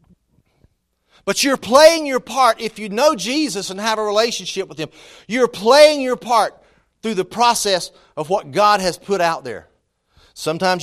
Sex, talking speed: male, 165 wpm